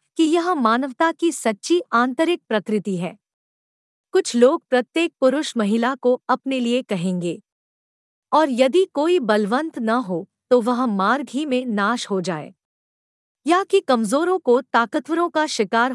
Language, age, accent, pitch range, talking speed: Hindi, 50-69, native, 220-305 Hz, 145 wpm